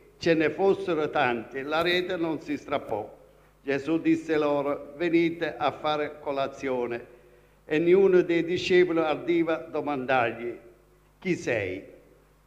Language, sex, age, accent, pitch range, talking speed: Italian, male, 50-69, native, 150-185 Hz, 120 wpm